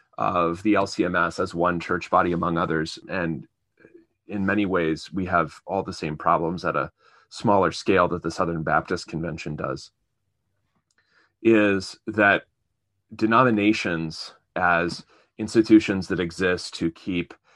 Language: English